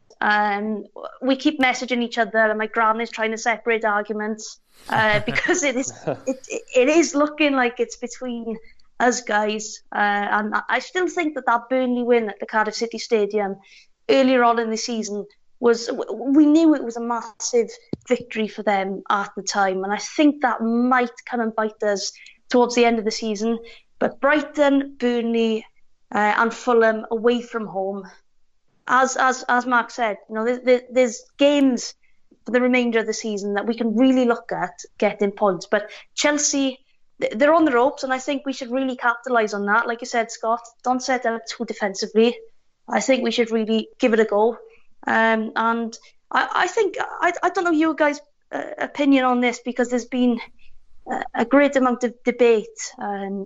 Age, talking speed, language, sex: 20-39, 185 wpm, English, female